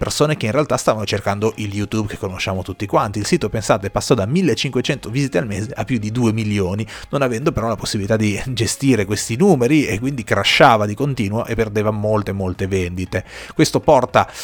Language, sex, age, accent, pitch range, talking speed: Italian, male, 30-49, native, 105-135 Hz, 195 wpm